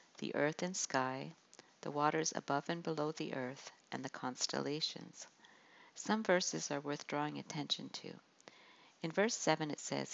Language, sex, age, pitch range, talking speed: English, female, 50-69, 140-170 Hz, 155 wpm